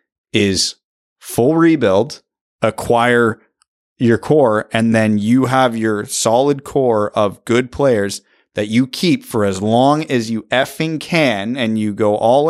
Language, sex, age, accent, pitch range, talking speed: English, male, 30-49, American, 105-130 Hz, 145 wpm